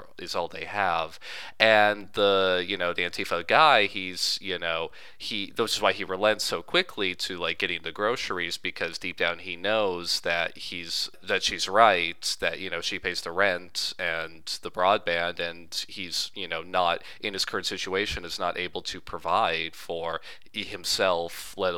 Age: 30-49